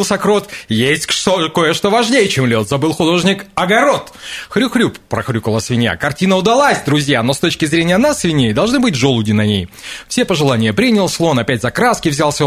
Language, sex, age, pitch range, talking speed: Russian, male, 30-49, 110-165 Hz, 165 wpm